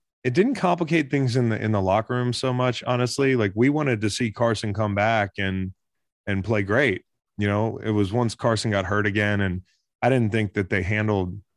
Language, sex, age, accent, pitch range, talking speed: English, male, 20-39, American, 95-120 Hz, 215 wpm